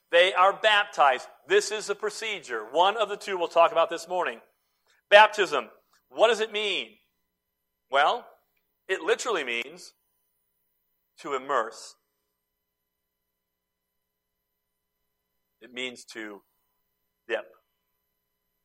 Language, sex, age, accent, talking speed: English, male, 50-69, American, 100 wpm